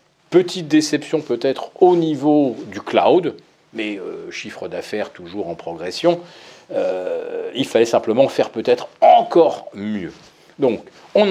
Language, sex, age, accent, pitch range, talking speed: French, male, 40-59, French, 130-220 Hz, 125 wpm